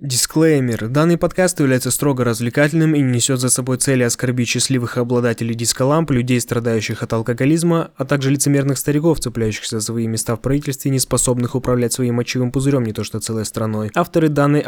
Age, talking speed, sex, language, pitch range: 20-39, 170 wpm, male, Russian, 110-130 Hz